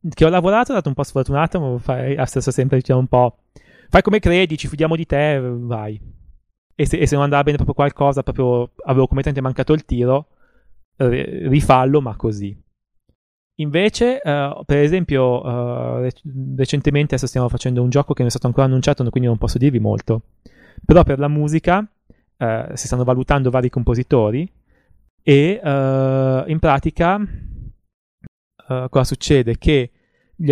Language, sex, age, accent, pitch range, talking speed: Italian, male, 20-39, native, 125-150 Hz, 165 wpm